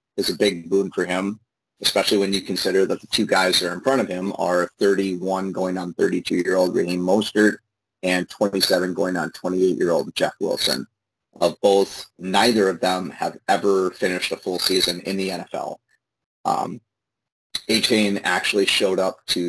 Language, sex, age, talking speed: English, male, 30-49, 170 wpm